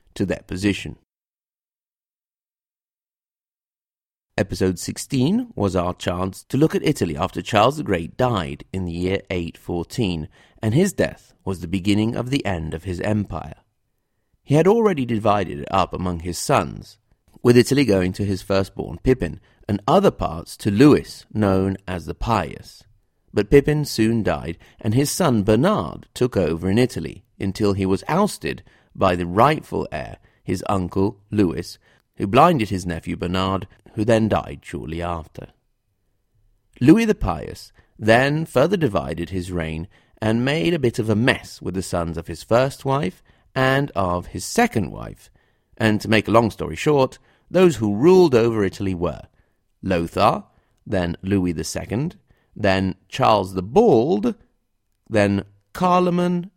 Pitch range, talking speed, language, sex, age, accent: 90-125 Hz, 150 wpm, English, male, 40-59, British